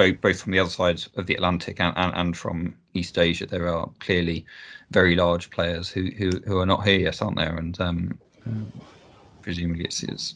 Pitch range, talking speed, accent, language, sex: 85-105 Hz, 195 wpm, British, English, male